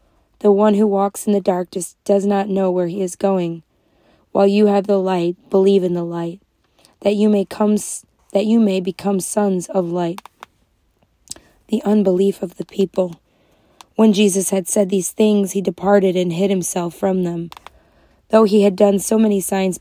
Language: English